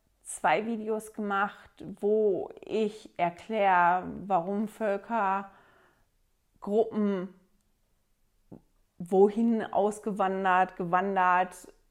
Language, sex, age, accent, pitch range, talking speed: German, female, 30-49, German, 190-225 Hz, 55 wpm